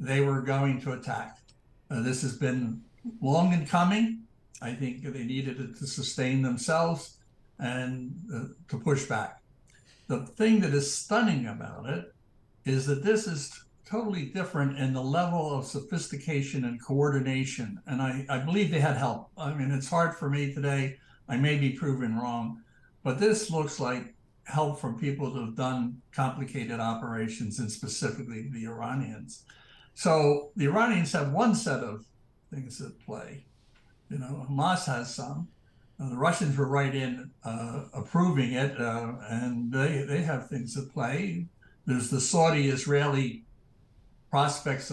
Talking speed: 155 wpm